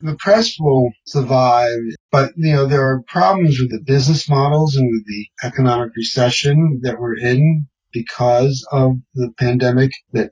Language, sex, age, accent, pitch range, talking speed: English, male, 40-59, American, 115-145 Hz, 155 wpm